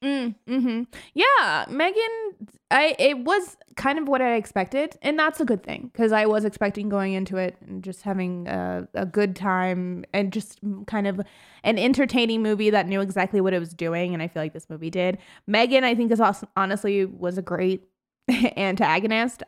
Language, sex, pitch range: English, female, 195-265 Hz